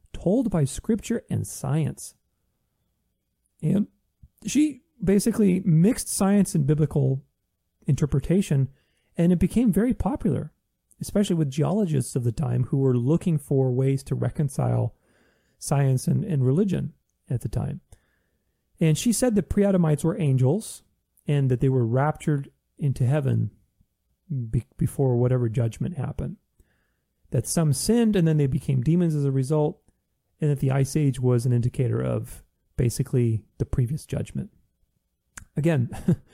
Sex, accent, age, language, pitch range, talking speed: male, American, 30-49, English, 130-170 Hz, 135 wpm